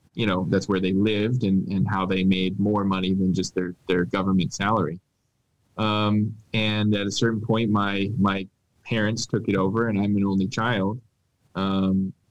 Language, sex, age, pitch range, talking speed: English, male, 20-39, 95-110 Hz, 180 wpm